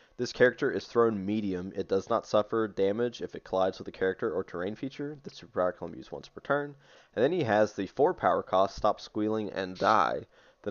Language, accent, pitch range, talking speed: English, American, 95-110 Hz, 225 wpm